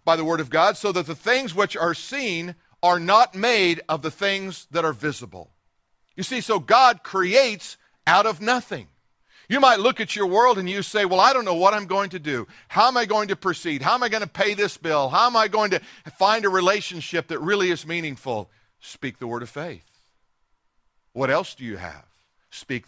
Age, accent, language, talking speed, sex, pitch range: 50-69, American, English, 220 wpm, male, 120-200 Hz